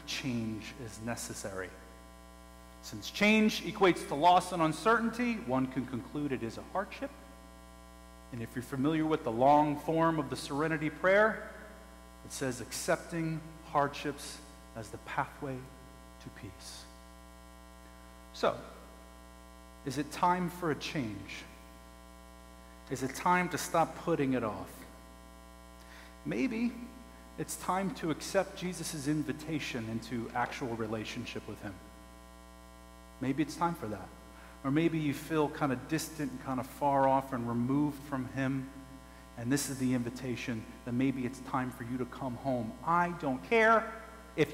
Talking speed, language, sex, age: 140 wpm, English, male, 30-49